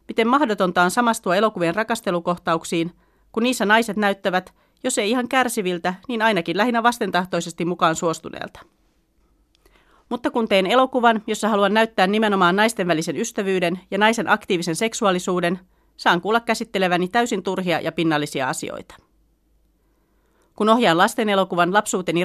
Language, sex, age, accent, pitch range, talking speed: Finnish, female, 40-59, native, 170-215 Hz, 125 wpm